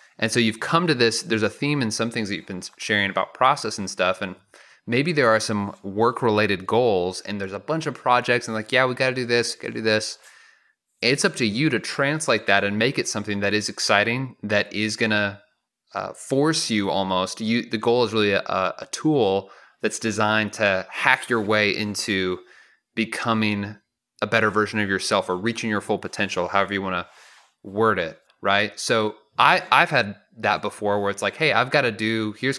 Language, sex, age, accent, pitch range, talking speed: English, male, 20-39, American, 100-115 Hz, 210 wpm